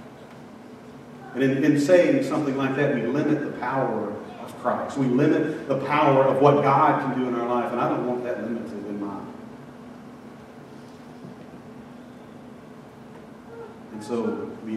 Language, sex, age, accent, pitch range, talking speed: English, male, 40-59, American, 120-145 Hz, 145 wpm